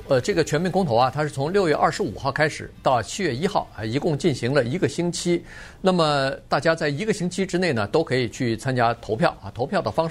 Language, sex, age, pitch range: Chinese, male, 50-69, 120-190 Hz